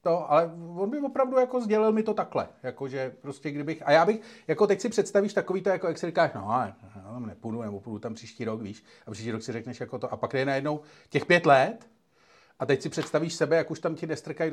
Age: 40-59